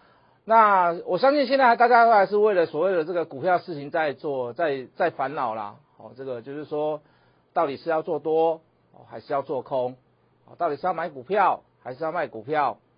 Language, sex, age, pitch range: Chinese, male, 50-69, 150-215 Hz